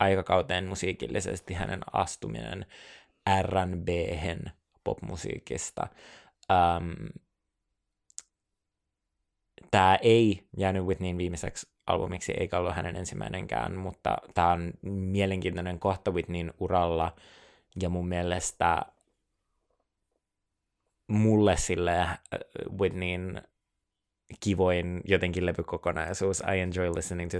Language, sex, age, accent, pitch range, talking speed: Finnish, male, 20-39, native, 85-95 Hz, 80 wpm